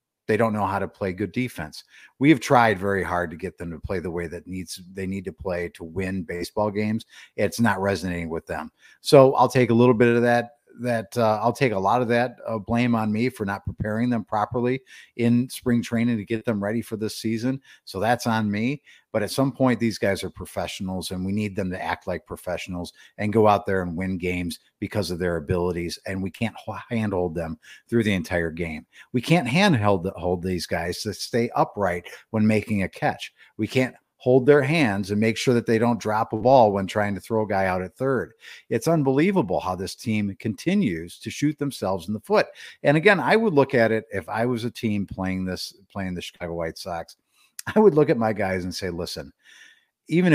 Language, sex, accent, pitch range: English, male, American, 95-120 Hz